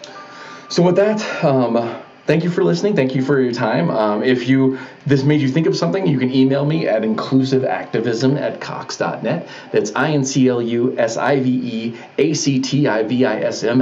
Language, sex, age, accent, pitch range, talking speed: English, male, 30-49, American, 115-150 Hz, 140 wpm